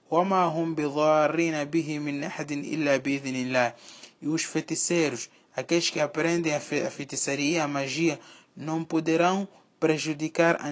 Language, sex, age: Portuguese, male, 20-39